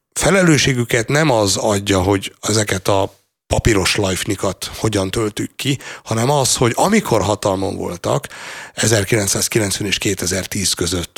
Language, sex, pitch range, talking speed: Hungarian, male, 90-110 Hz, 120 wpm